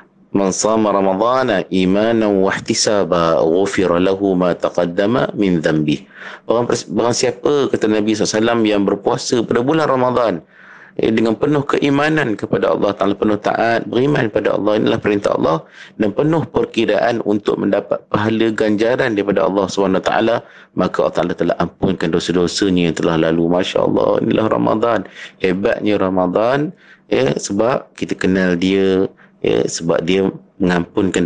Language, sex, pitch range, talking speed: Malay, male, 95-110 Hz, 140 wpm